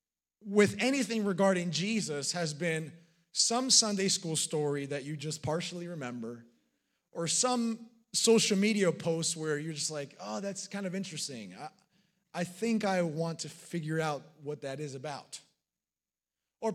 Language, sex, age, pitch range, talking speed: English, male, 30-49, 155-205 Hz, 150 wpm